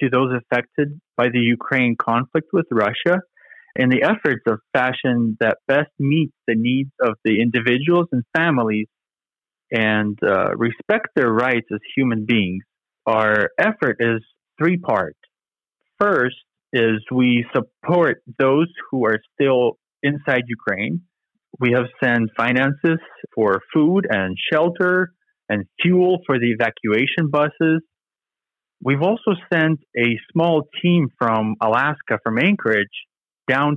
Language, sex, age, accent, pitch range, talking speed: English, male, 30-49, American, 115-160 Hz, 130 wpm